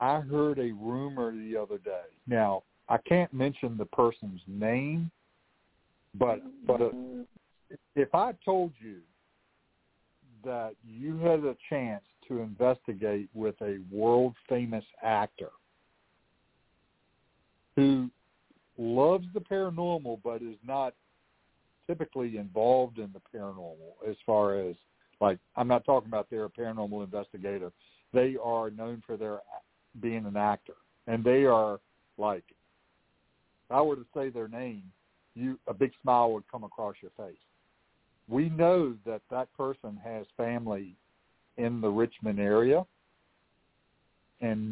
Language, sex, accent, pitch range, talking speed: English, male, American, 105-130 Hz, 130 wpm